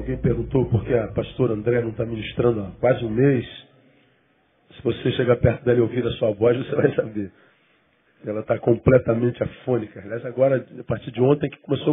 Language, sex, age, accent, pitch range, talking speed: Portuguese, male, 40-59, Brazilian, 120-150 Hz, 190 wpm